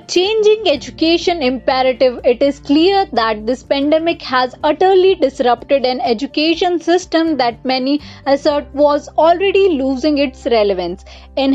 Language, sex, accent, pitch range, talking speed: English, female, Indian, 270-340 Hz, 125 wpm